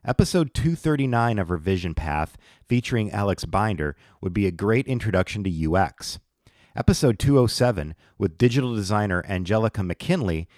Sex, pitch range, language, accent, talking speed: male, 90-120 Hz, English, American, 125 wpm